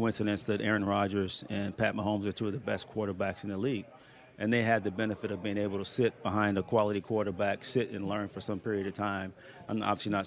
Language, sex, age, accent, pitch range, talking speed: English, male, 40-59, American, 105-115 Hz, 240 wpm